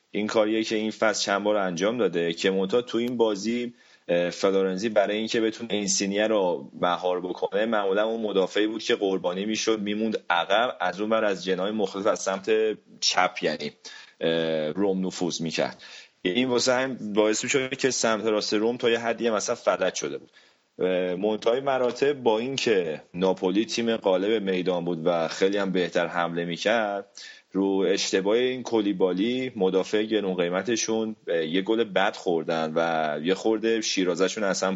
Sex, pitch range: male, 90-110 Hz